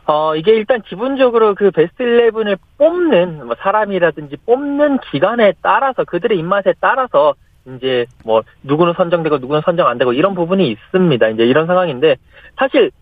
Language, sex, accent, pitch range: Korean, male, native, 165-275 Hz